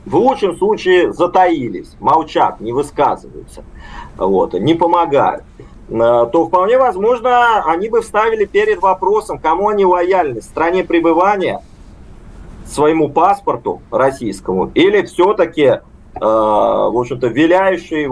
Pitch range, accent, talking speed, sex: 150-240 Hz, native, 105 wpm, male